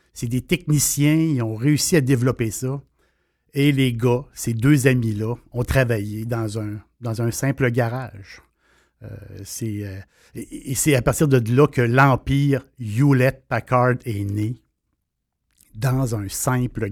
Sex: male